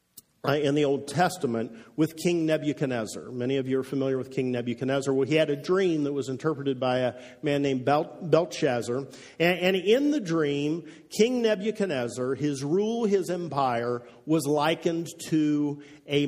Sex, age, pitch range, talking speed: male, 50-69, 135-175 Hz, 160 wpm